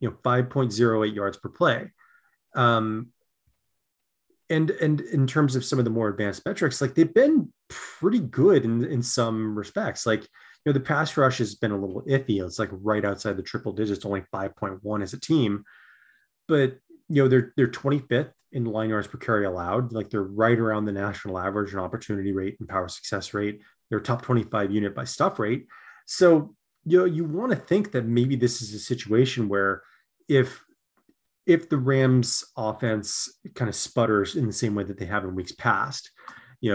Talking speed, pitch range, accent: 190 wpm, 105-135 Hz, American